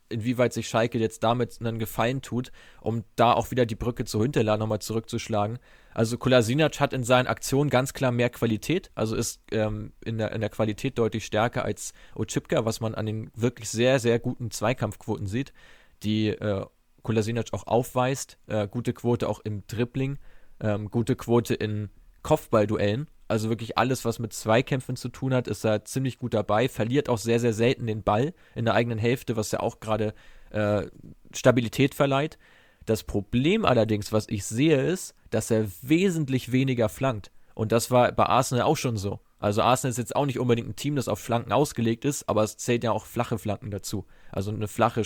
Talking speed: 190 wpm